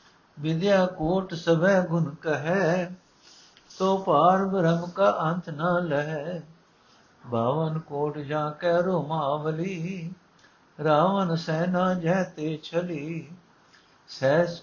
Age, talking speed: 60-79, 90 wpm